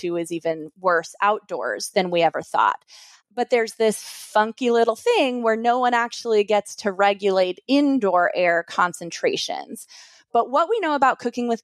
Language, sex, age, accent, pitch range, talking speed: English, female, 20-39, American, 185-245 Hz, 160 wpm